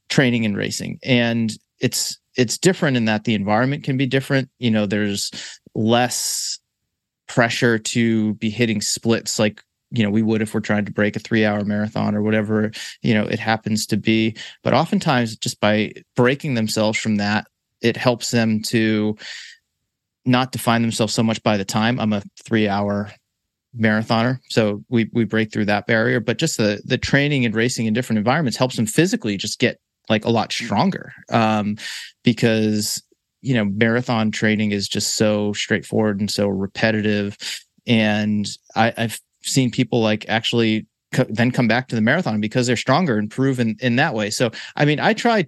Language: English